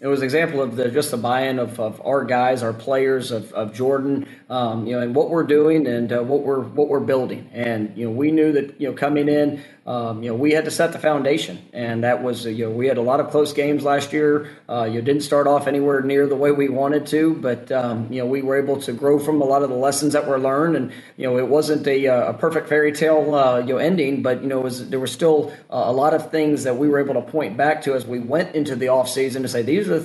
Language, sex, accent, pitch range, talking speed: English, male, American, 125-150 Hz, 285 wpm